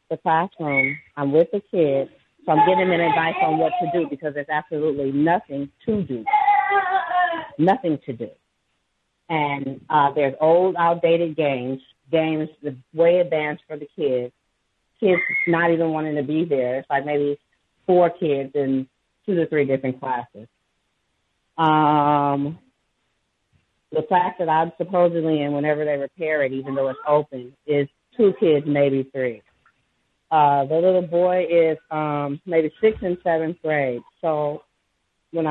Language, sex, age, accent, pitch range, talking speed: English, female, 30-49, American, 145-175 Hz, 145 wpm